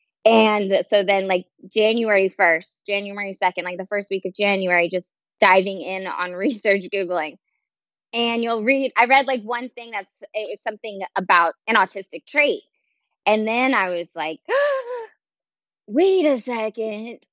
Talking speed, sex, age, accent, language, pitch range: 155 wpm, female, 20-39, American, English, 190-260 Hz